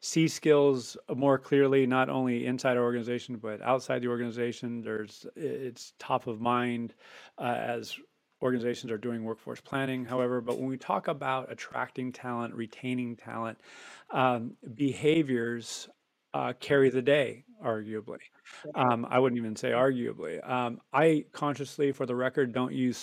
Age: 40-59